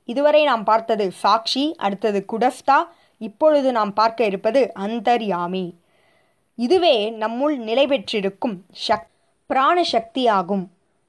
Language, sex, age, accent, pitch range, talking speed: Tamil, female, 20-39, native, 200-260 Hz, 85 wpm